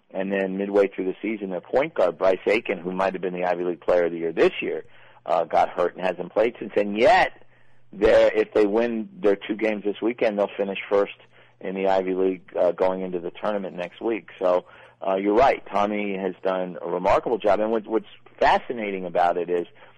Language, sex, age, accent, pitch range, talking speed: English, male, 50-69, American, 90-100 Hz, 215 wpm